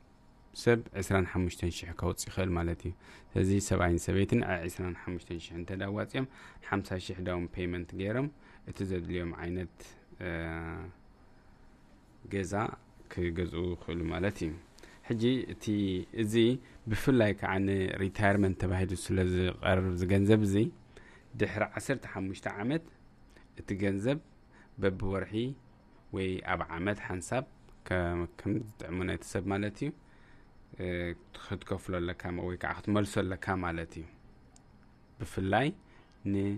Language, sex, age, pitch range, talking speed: English, male, 20-39, 90-105 Hz, 95 wpm